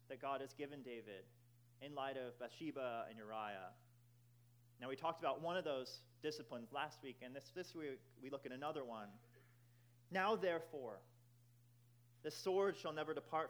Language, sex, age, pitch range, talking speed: English, male, 30-49, 120-150 Hz, 165 wpm